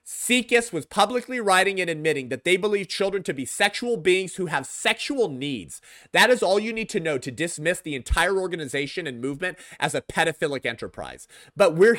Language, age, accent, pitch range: English, 30-49, American, 145-220 Hz